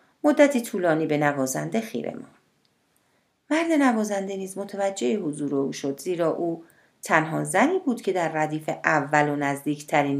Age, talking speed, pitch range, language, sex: 40-59, 140 wpm, 150-235 Hz, Persian, female